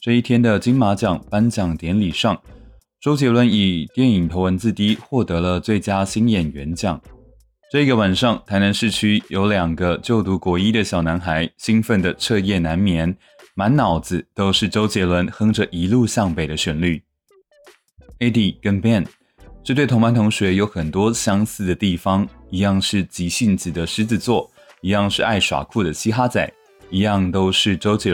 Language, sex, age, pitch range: Chinese, male, 20-39, 90-115 Hz